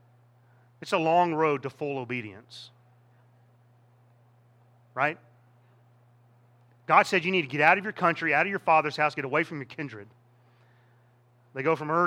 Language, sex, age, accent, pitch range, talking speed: English, male, 30-49, American, 120-160 Hz, 160 wpm